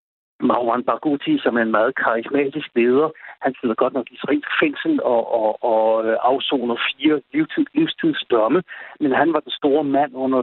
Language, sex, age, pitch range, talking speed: Danish, male, 60-79, 125-155 Hz, 160 wpm